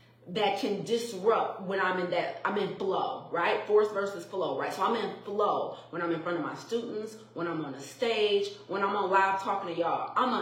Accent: American